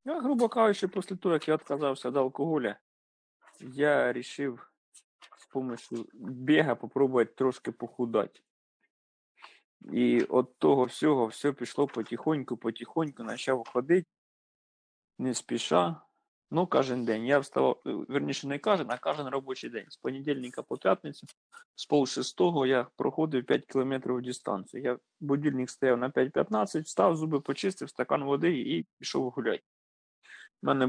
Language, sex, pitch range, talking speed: English, male, 120-150 Hz, 130 wpm